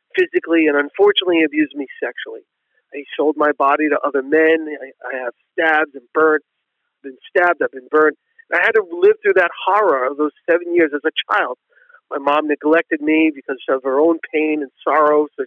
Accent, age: American, 40-59